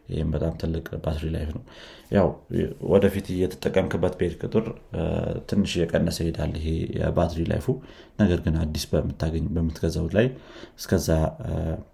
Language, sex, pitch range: Amharic, male, 80-95 Hz